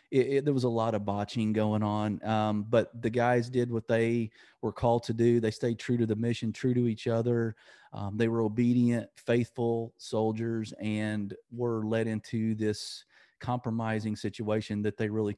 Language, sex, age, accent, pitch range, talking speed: English, male, 30-49, American, 110-125 Hz, 175 wpm